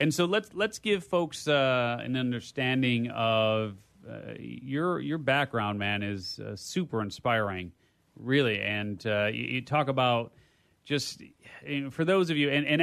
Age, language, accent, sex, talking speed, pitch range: 30-49, English, American, male, 165 wpm, 110-140 Hz